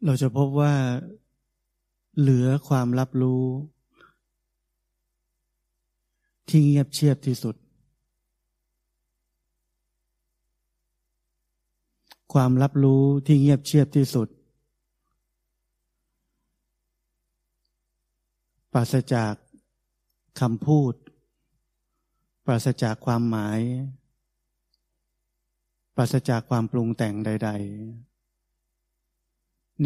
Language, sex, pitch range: Thai, male, 110-135 Hz